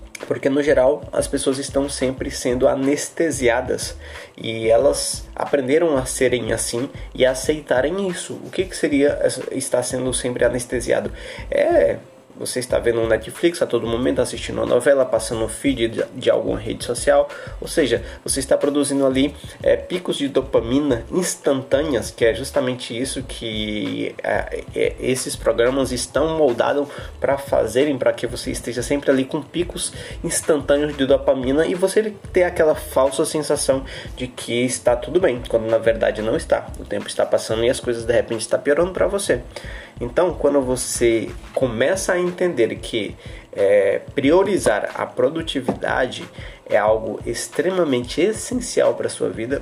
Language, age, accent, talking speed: Portuguese, 20-39, Brazilian, 150 wpm